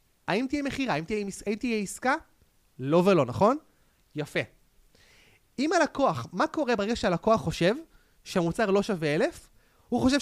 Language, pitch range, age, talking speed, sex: Hebrew, 145-225 Hz, 30-49, 140 wpm, male